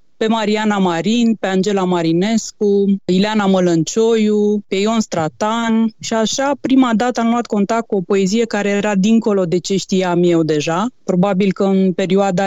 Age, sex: 20-39, female